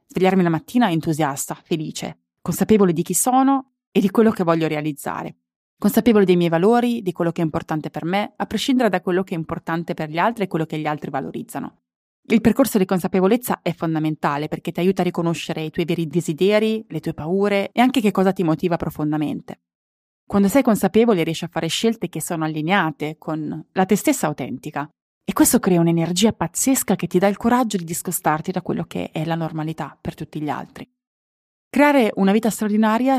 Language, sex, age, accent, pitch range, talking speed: Italian, female, 20-39, native, 160-200 Hz, 195 wpm